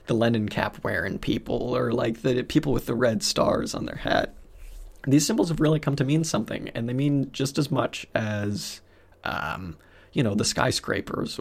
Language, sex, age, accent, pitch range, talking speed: English, male, 20-39, American, 105-155 Hz, 190 wpm